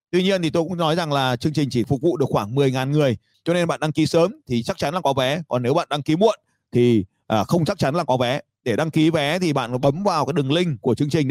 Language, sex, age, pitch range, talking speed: Vietnamese, male, 30-49, 125-170 Hz, 295 wpm